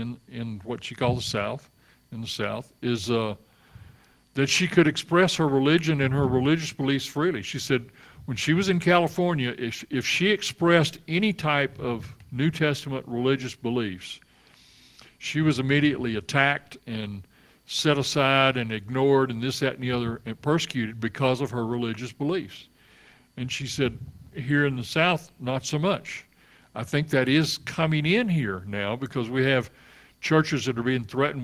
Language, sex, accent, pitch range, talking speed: English, male, American, 120-145 Hz, 170 wpm